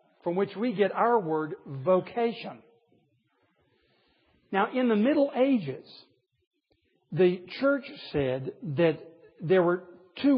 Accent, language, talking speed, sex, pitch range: American, English, 110 wpm, male, 170-235 Hz